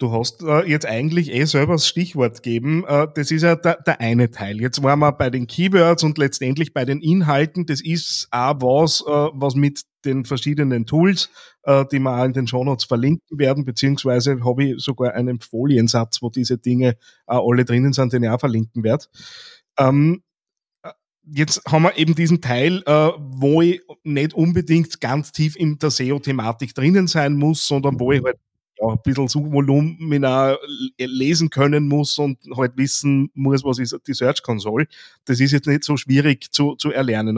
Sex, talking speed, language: male, 175 wpm, German